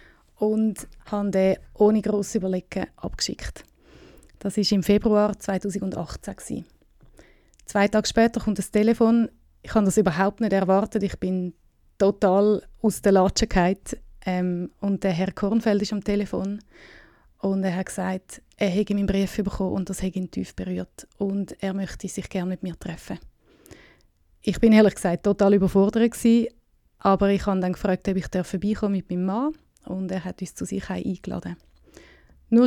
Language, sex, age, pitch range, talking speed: German, female, 20-39, 190-215 Hz, 155 wpm